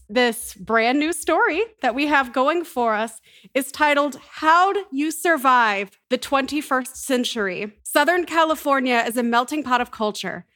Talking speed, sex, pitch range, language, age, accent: 150 wpm, female, 230-285 Hz, English, 30-49, American